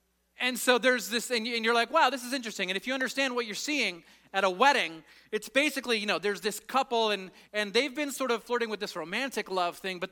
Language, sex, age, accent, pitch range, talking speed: English, male, 30-49, American, 155-220 Hz, 245 wpm